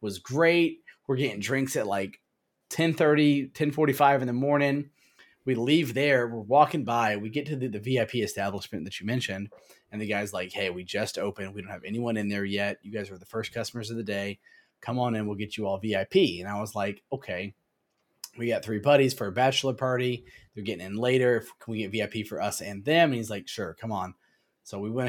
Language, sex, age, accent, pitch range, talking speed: English, male, 20-39, American, 100-125 Hz, 225 wpm